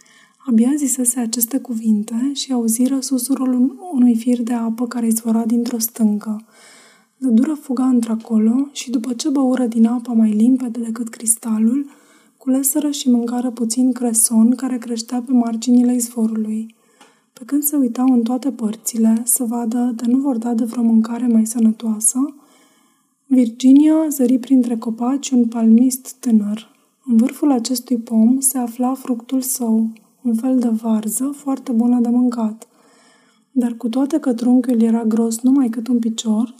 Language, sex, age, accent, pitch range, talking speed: Romanian, female, 20-39, native, 230-260 Hz, 150 wpm